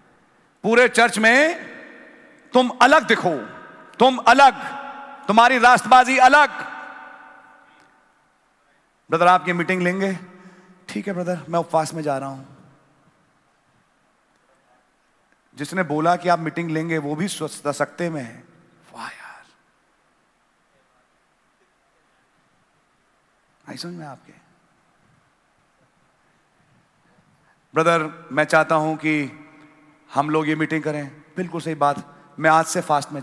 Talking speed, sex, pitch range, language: 110 wpm, male, 150-195 Hz, English